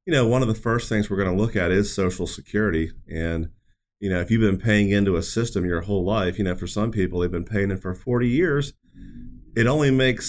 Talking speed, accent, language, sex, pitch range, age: 250 wpm, American, English, male, 95-115 Hz, 30-49